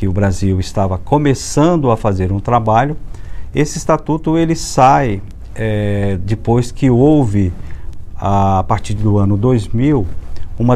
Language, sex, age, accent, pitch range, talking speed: Portuguese, male, 50-69, Brazilian, 95-140 Hz, 135 wpm